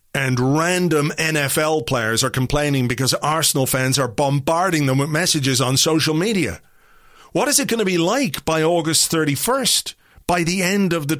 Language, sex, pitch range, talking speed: English, male, 130-175 Hz, 170 wpm